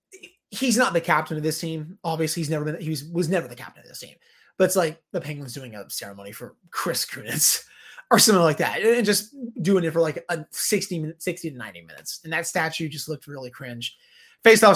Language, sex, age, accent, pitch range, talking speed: English, male, 20-39, American, 160-200 Hz, 225 wpm